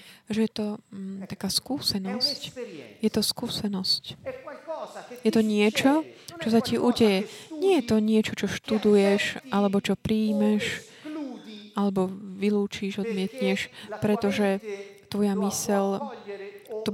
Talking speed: 115 wpm